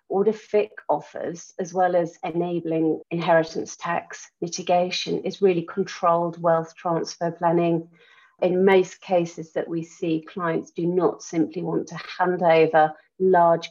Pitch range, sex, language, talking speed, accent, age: 170-195 Hz, female, English, 135 wpm, British, 40-59